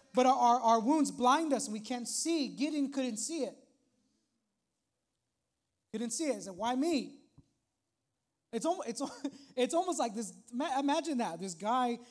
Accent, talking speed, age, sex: American, 175 wpm, 20-39, male